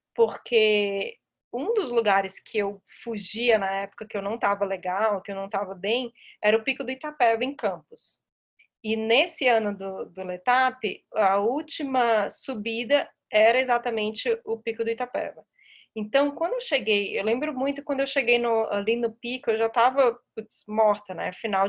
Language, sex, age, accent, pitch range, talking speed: Portuguese, female, 20-39, Brazilian, 205-250 Hz, 170 wpm